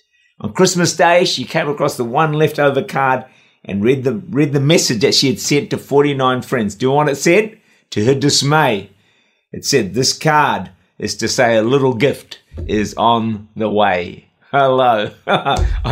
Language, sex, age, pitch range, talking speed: English, male, 50-69, 110-155 Hz, 180 wpm